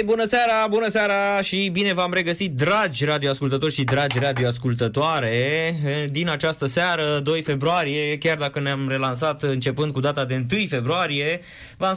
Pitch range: 130-165 Hz